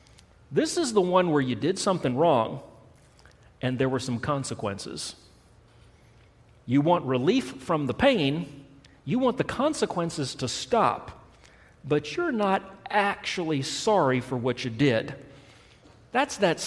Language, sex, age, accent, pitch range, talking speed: English, male, 40-59, American, 120-170 Hz, 135 wpm